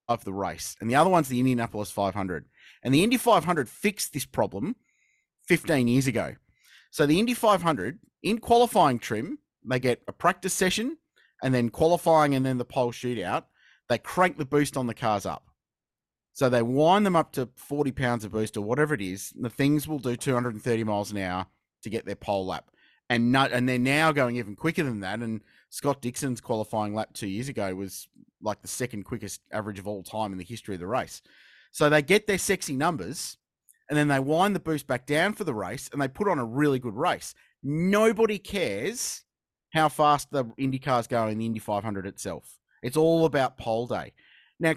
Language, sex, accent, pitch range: English, male, Australian, 110-155 Hz